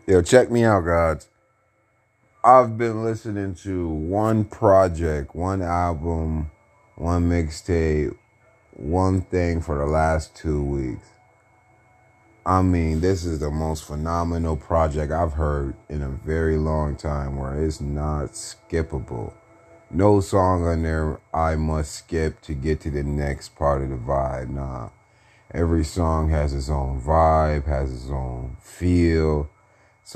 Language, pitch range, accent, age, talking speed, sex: English, 75-95 Hz, American, 30-49, 135 wpm, male